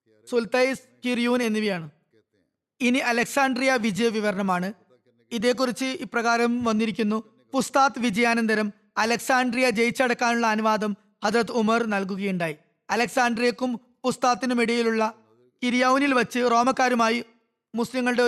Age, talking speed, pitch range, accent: 20-39, 80 wpm, 220-250 Hz, native